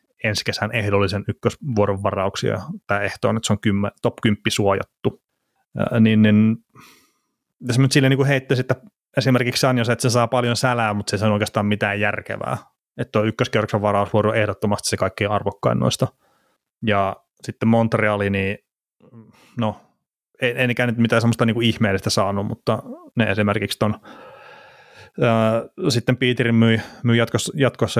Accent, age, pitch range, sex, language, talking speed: native, 30-49, 105-120 Hz, male, Finnish, 150 wpm